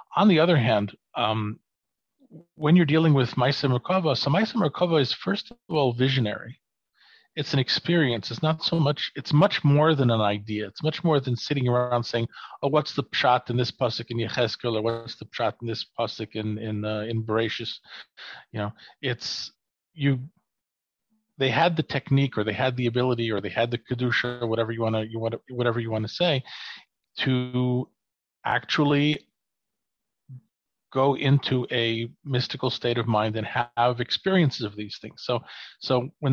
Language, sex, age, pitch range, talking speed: English, male, 40-59, 110-140 Hz, 175 wpm